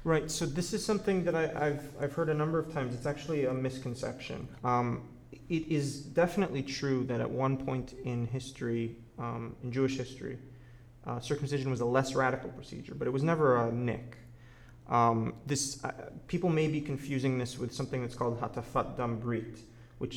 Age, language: 30-49, English